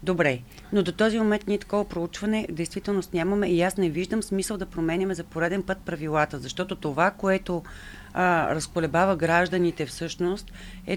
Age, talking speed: 40-59, 160 wpm